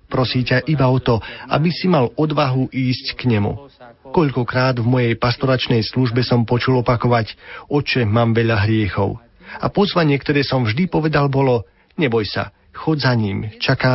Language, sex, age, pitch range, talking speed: Slovak, male, 40-59, 110-135 Hz, 155 wpm